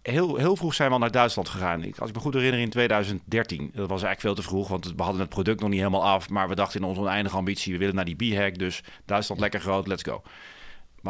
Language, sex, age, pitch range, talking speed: Dutch, male, 40-59, 100-130 Hz, 270 wpm